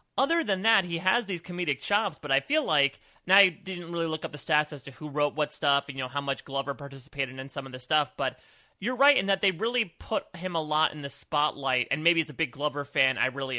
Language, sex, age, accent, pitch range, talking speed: English, male, 30-49, American, 135-175 Hz, 270 wpm